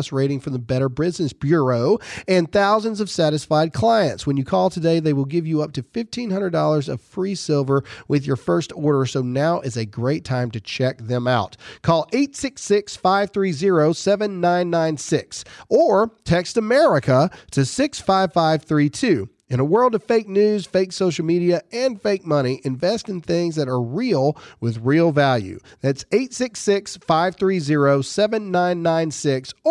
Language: English